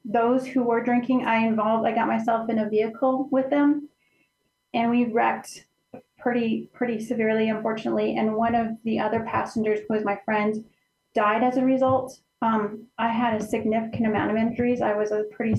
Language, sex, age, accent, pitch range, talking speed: English, female, 30-49, American, 220-245 Hz, 180 wpm